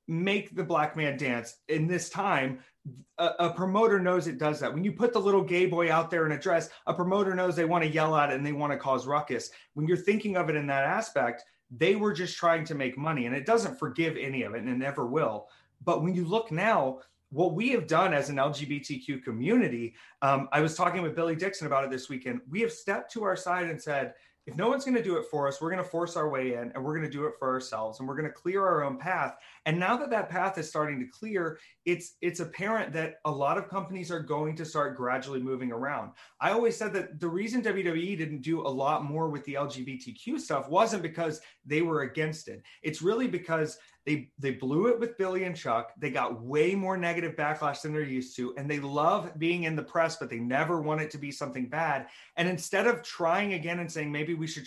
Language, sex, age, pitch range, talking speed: English, male, 30-49, 140-185 Hz, 245 wpm